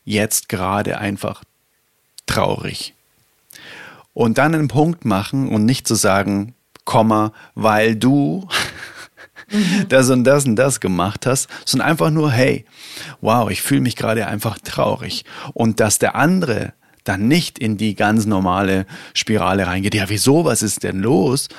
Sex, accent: male, German